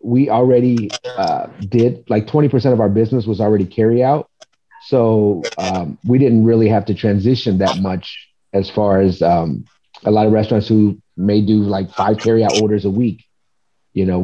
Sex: male